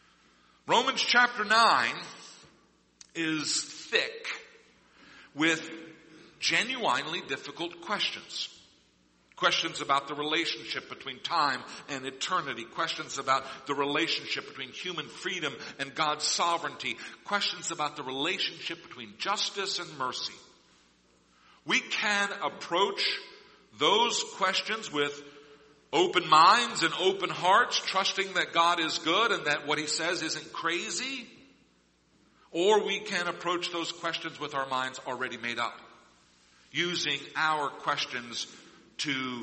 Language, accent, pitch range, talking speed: English, American, 125-175 Hz, 115 wpm